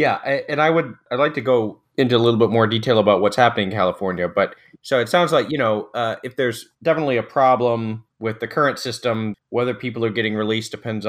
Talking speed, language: 225 wpm, English